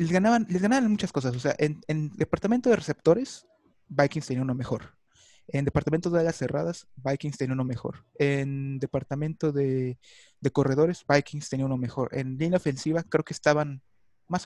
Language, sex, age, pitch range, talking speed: Spanish, male, 30-49, 130-160 Hz, 175 wpm